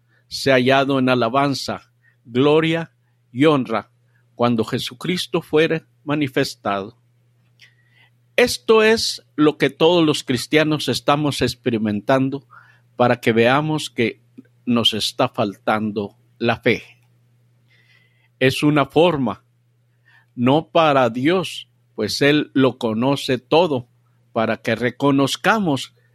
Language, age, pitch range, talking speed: Spanish, 50-69, 120-145 Hz, 100 wpm